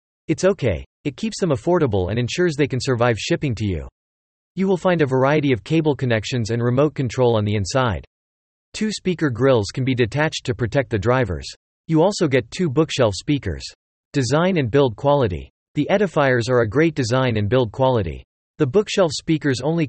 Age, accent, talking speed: 40-59, American, 185 wpm